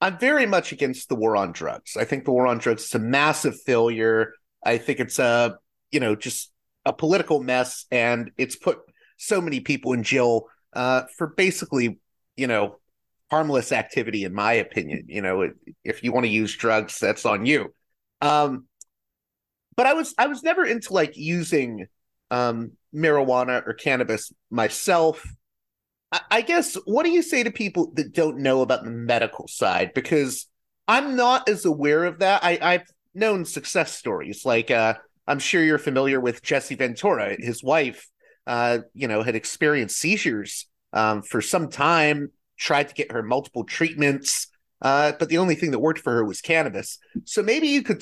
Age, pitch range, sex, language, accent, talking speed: 30-49, 120-170 Hz, male, English, American, 175 wpm